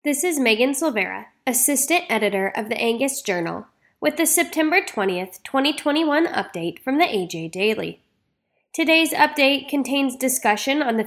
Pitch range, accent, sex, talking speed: 205-295 Hz, American, female, 140 wpm